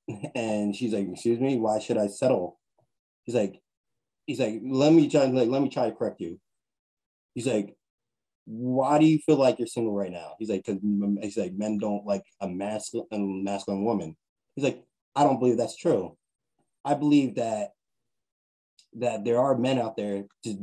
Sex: male